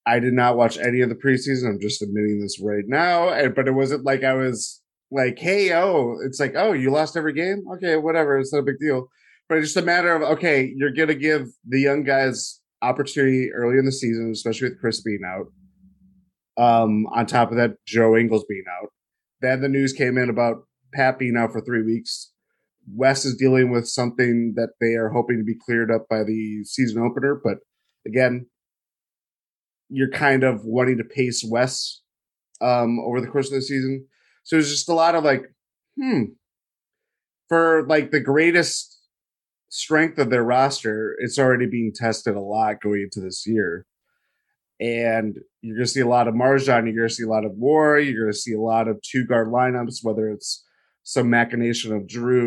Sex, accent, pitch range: male, American, 115-145 Hz